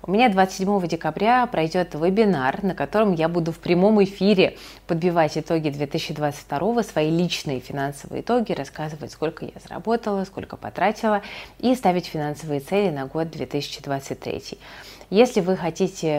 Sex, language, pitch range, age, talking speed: female, Russian, 145-195 Hz, 30-49, 135 wpm